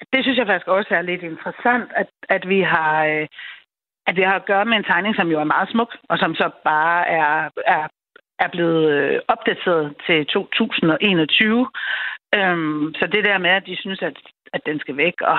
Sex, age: female, 60-79